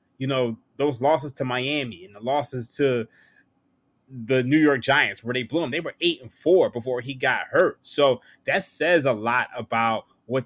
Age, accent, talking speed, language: 20-39, American, 195 wpm, English